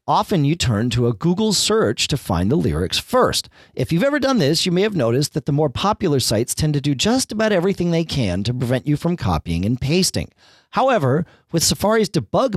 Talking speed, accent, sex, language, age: 215 wpm, American, male, English, 40-59